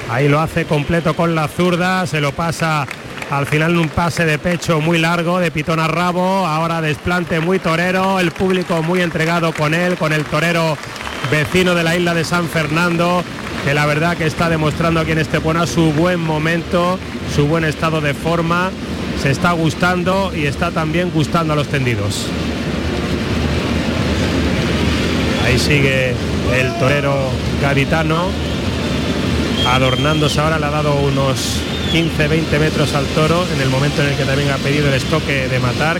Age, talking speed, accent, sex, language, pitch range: 30-49, 170 wpm, Spanish, male, Spanish, 130-165 Hz